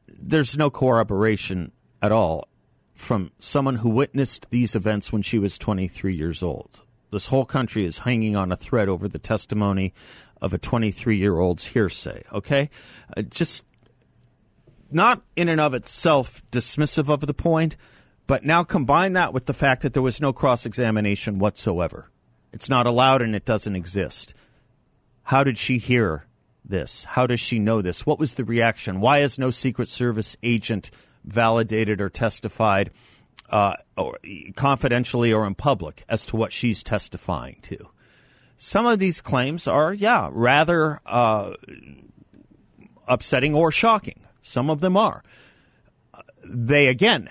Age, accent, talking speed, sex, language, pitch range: 50-69, American, 145 wpm, male, English, 105-135 Hz